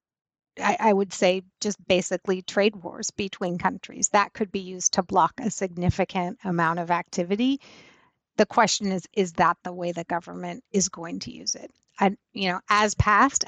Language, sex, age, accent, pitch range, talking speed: English, female, 30-49, American, 185-220 Hz, 180 wpm